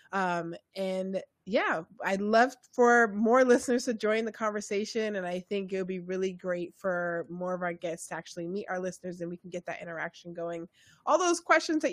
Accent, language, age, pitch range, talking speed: American, English, 20-39, 180-245 Hz, 200 wpm